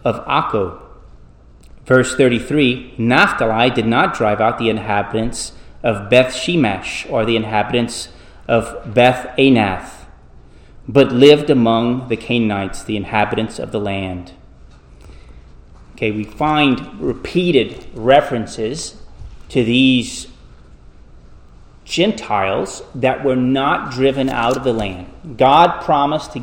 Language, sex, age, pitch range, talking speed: English, male, 30-49, 110-130 Hz, 110 wpm